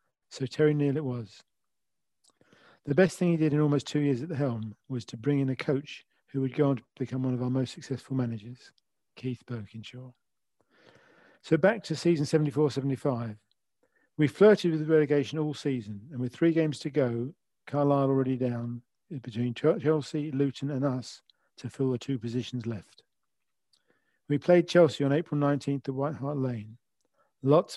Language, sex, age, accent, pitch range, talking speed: English, male, 50-69, British, 125-150 Hz, 175 wpm